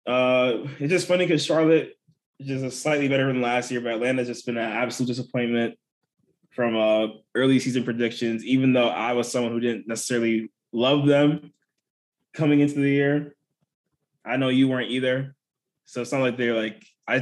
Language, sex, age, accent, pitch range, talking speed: English, male, 20-39, American, 120-140 Hz, 180 wpm